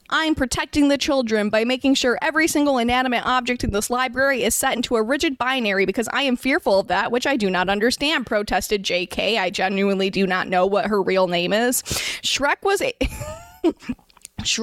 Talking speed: 180 wpm